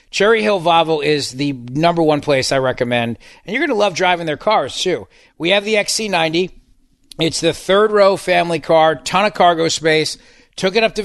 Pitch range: 145-190 Hz